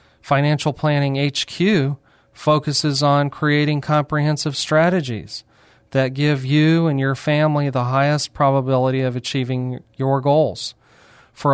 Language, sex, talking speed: English, male, 115 wpm